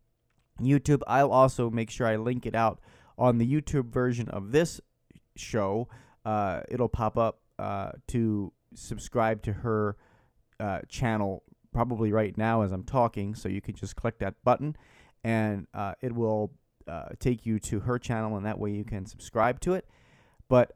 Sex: male